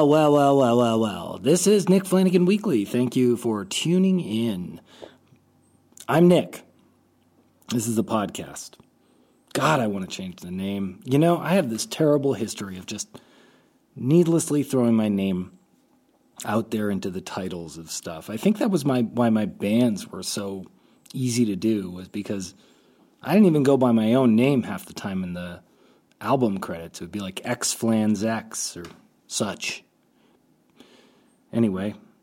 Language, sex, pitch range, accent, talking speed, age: English, male, 105-145 Hz, American, 165 wpm, 30-49